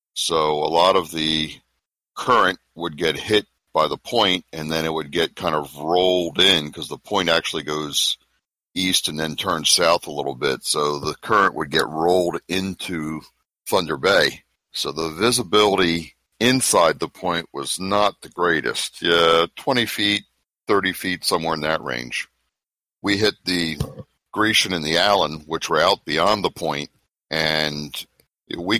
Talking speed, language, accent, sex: 160 wpm, English, American, male